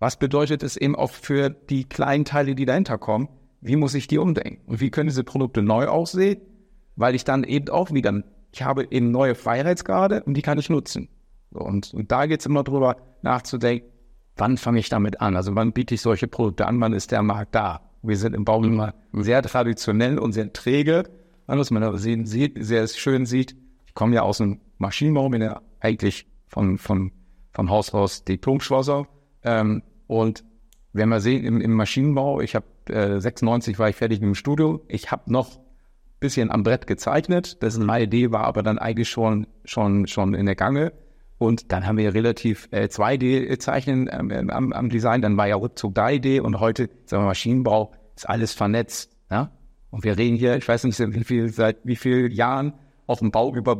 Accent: German